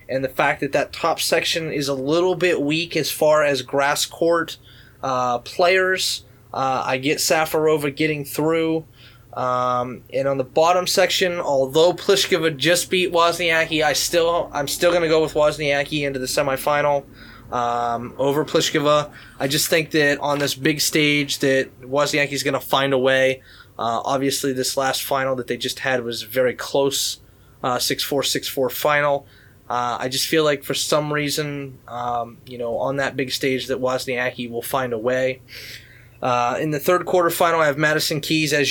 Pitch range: 125-155 Hz